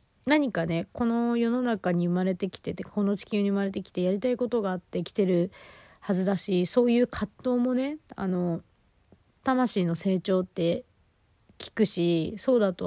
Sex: female